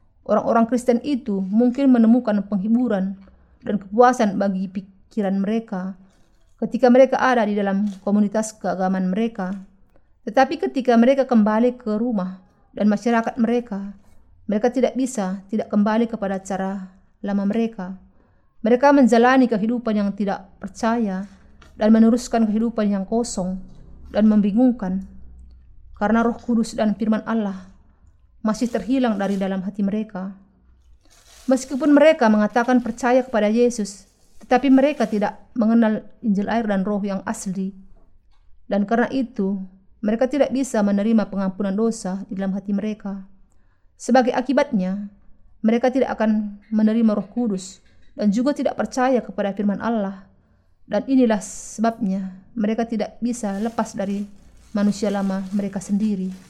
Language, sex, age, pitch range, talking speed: Indonesian, female, 30-49, 195-235 Hz, 125 wpm